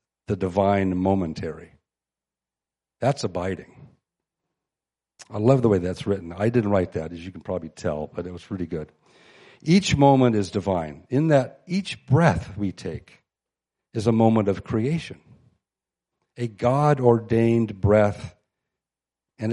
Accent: American